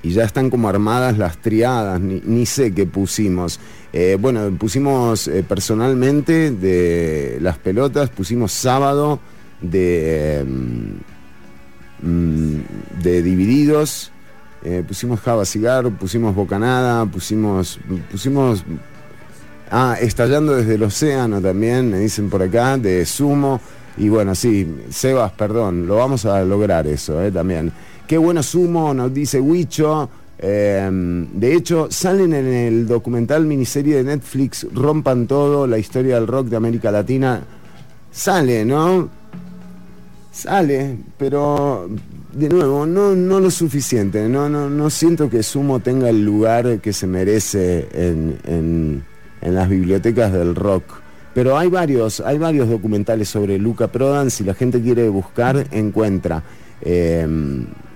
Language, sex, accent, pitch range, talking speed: English, male, Argentinian, 95-135 Hz, 135 wpm